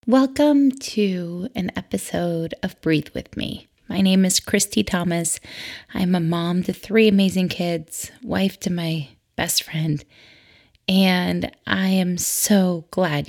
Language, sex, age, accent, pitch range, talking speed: English, female, 20-39, American, 170-210 Hz, 135 wpm